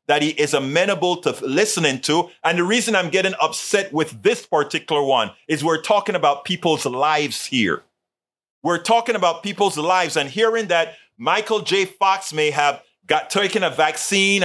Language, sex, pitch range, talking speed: English, male, 145-190 Hz, 170 wpm